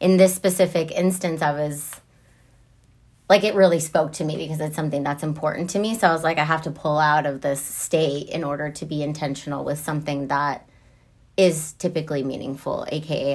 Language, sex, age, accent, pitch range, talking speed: English, female, 30-49, American, 140-165 Hz, 195 wpm